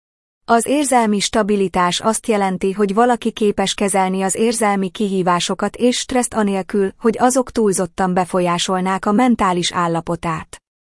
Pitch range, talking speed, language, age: 180-225 Hz, 120 wpm, Hungarian, 20-39